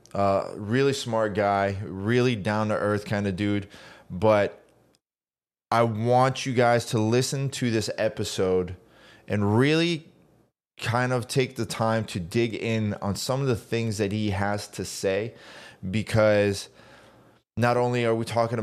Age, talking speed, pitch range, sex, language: 20-39, 145 wpm, 100-115 Hz, male, English